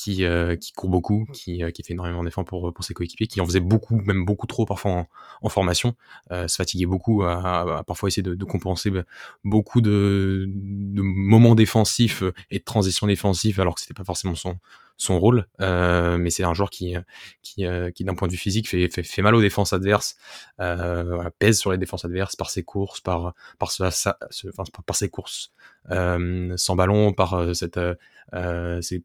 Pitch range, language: 90-105 Hz, French